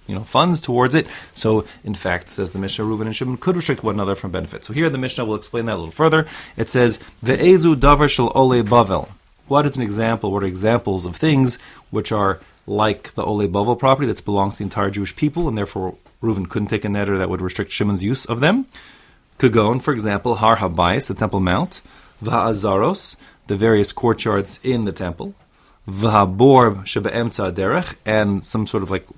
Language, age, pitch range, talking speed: English, 30-49, 95-125 Hz, 185 wpm